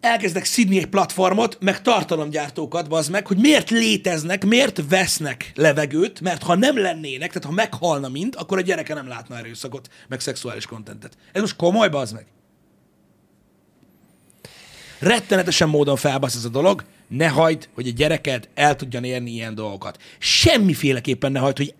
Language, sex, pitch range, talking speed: Hungarian, male, 130-190 Hz, 155 wpm